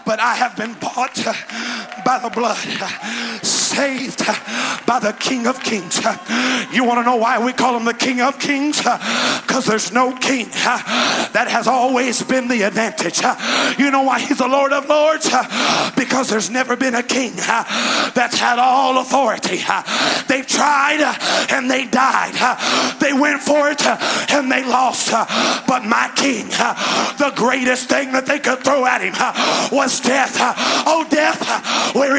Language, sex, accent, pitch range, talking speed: English, male, American, 250-285 Hz, 155 wpm